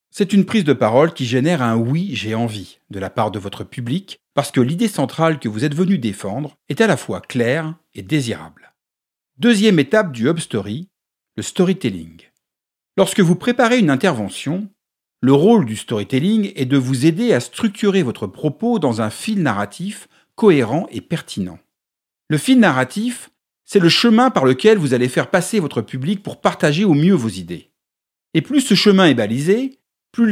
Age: 50-69